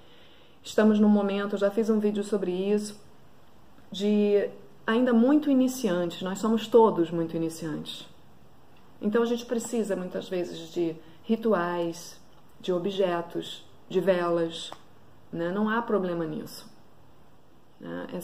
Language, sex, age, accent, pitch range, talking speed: Portuguese, female, 30-49, Brazilian, 180-230 Hz, 120 wpm